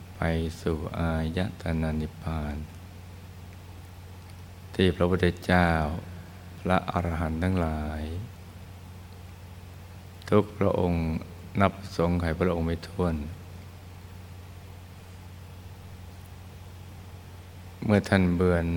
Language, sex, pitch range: Thai, male, 85-95 Hz